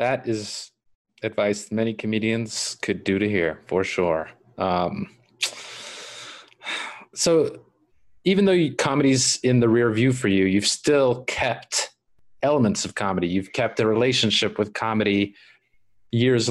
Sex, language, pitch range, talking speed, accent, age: male, English, 110-135 Hz, 130 wpm, American, 30-49